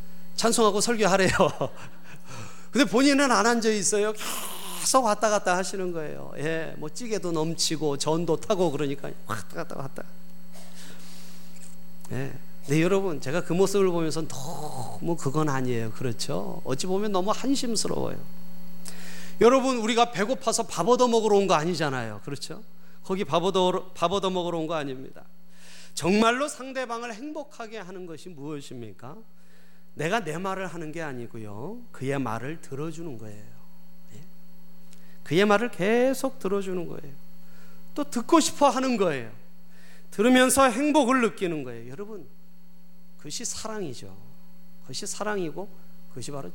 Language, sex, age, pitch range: Korean, male, 30-49, 165-205 Hz